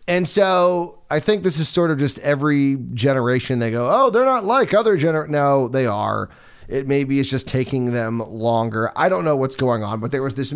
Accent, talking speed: American, 220 wpm